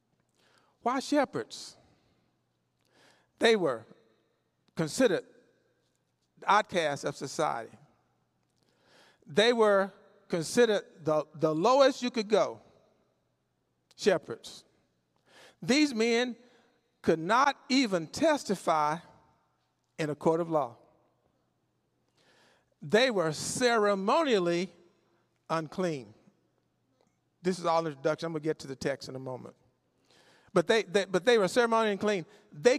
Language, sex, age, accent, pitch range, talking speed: English, male, 50-69, American, 165-245 Hz, 105 wpm